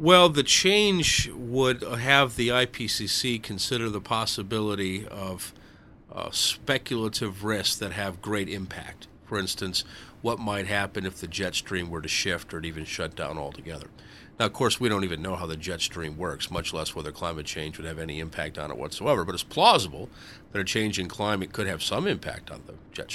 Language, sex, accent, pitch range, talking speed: English, male, American, 85-105 Hz, 190 wpm